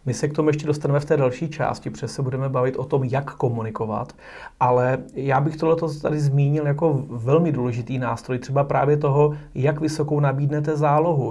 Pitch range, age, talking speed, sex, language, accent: 135-155 Hz, 30-49, 185 wpm, male, Czech, native